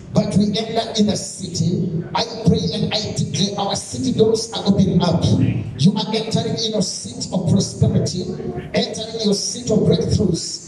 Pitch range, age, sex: 180-245 Hz, 50-69, male